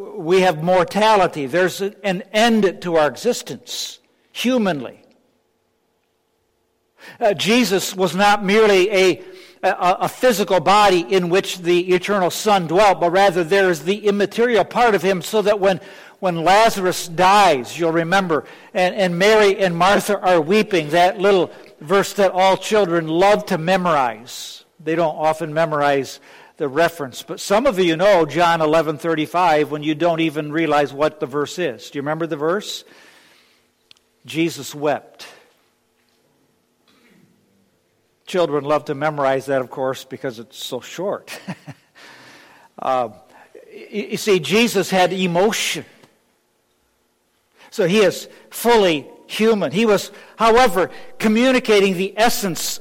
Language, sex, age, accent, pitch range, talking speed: English, male, 60-79, American, 165-205 Hz, 130 wpm